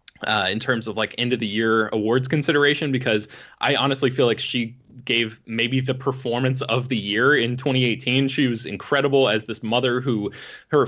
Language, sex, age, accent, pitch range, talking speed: English, male, 20-39, American, 115-140 Hz, 190 wpm